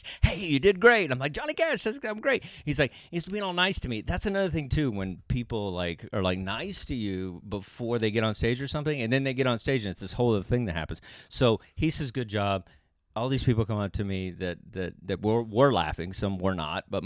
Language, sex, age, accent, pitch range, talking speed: English, male, 30-49, American, 95-140 Hz, 255 wpm